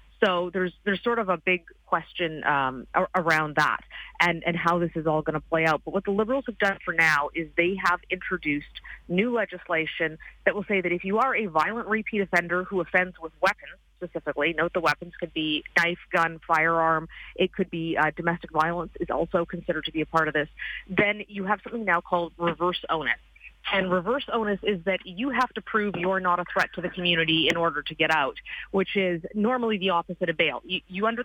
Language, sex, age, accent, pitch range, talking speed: English, female, 30-49, American, 165-200 Hz, 215 wpm